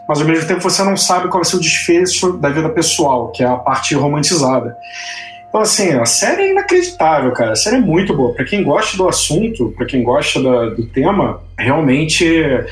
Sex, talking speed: male, 210 wpm